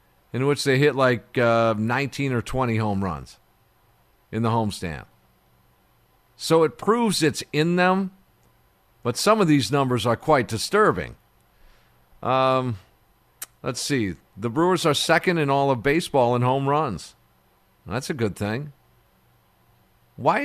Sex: male